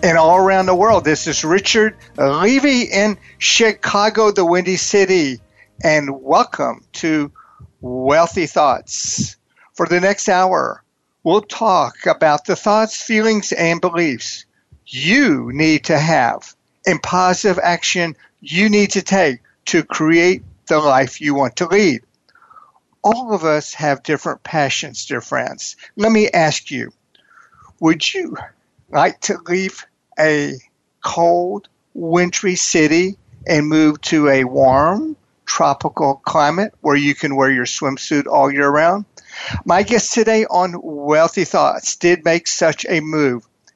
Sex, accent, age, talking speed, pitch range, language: male, American, 60-79, 135 wpm, 145-195 Hz, English